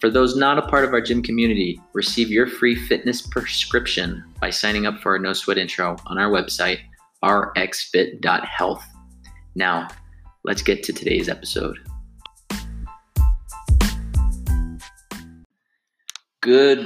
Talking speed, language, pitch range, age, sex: 120 wpm, English, 95-110 Hz, 20-39, male